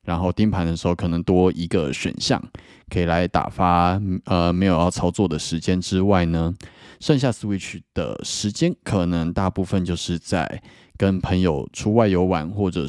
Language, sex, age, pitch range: Chinese, male, 20-39, 85-105 Hz